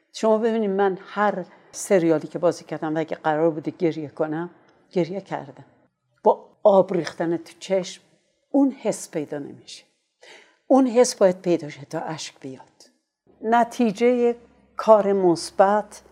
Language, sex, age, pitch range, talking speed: Persian, female, 60-79, 165-200 Hz, 135 wpm